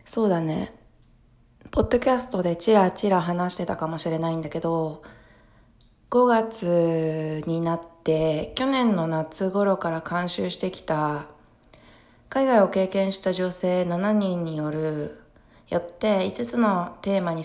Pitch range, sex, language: 155-195 Hz, female, Japanese